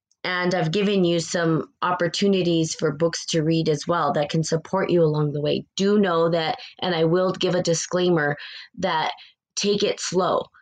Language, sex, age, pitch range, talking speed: English, female, 20-39, 160-190 Hz, 180 wpm